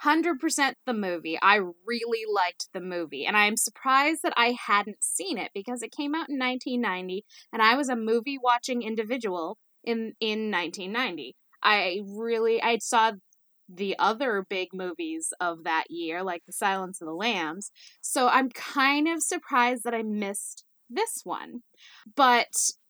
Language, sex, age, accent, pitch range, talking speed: English, female, 10-29, American, 210-265 Hz, 155 wpm